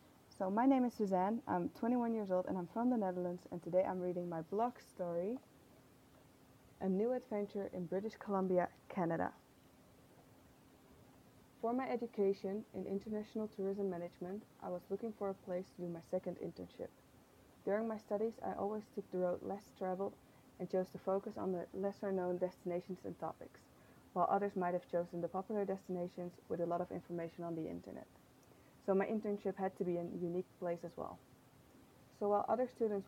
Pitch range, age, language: 175-200 Hz, 20-39, English